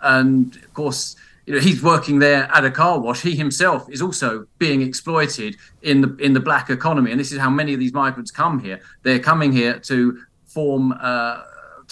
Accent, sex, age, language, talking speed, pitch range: British, male, 40-59, English, 200 wpm, 120-145 Hz